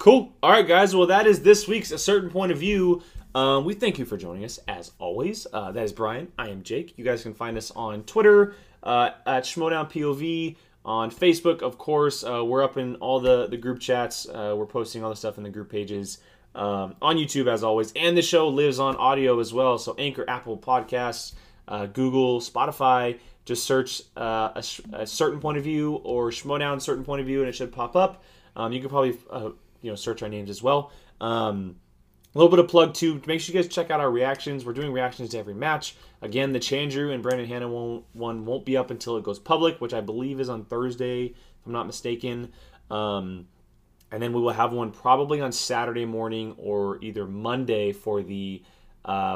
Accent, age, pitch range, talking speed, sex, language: American, 20-39, 110-145 Hz, 215 wpm, male, English